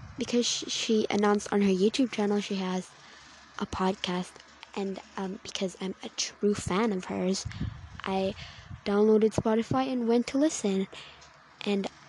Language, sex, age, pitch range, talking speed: English, female, 10-29, 195-235 Hz, 140 wpm